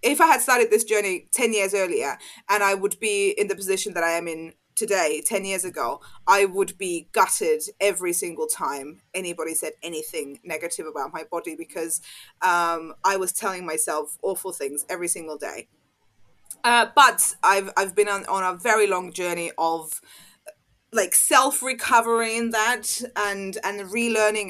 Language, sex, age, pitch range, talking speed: English, female, 20-39, 185-310 Hz, 165 wpm